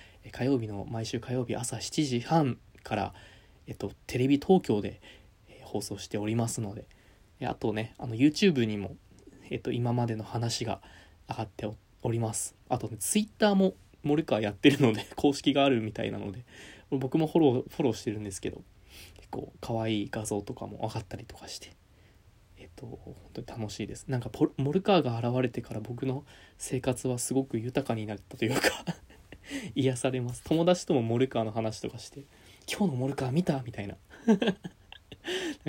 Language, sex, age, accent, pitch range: Japanese, male, 20-39, native, 105-130 Hz